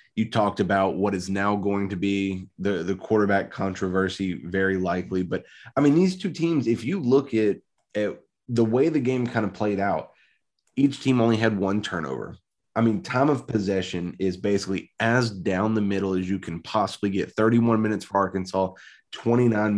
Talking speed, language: 185 wpm, English